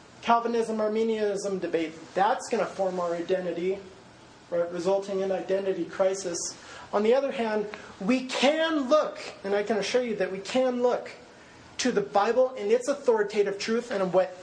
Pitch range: 180-235 Hz